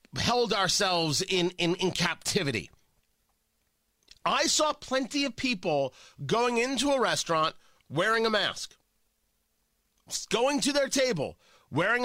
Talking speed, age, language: 115 wpm, 30-49, English